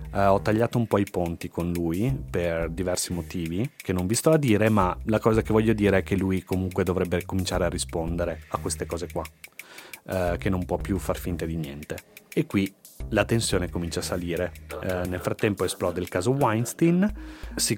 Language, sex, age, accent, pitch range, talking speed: Italian, male, 30-49, native, 90-110 Hz, 190 wpm